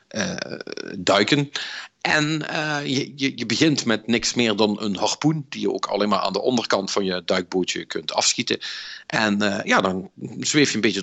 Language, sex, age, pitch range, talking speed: Dutch, male, 50-69, 95-125 Hz, 190 wpm